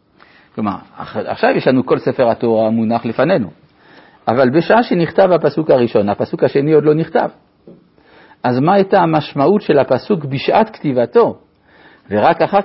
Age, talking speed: 50-69, 140 wpm